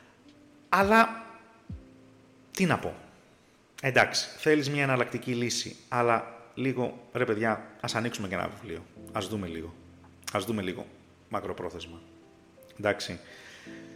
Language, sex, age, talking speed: Greek, male, 30-49, 110 wpm